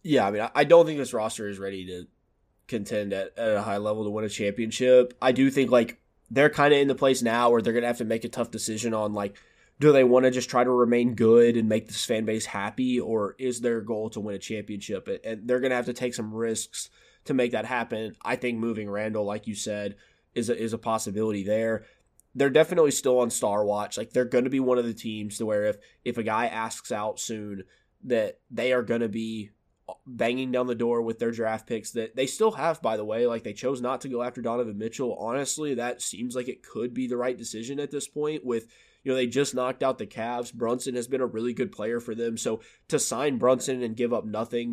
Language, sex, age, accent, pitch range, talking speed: English, male, 20-39, American, 110-130 Hz, 250 wpm